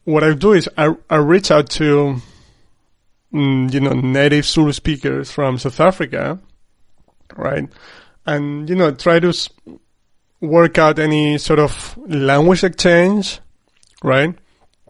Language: English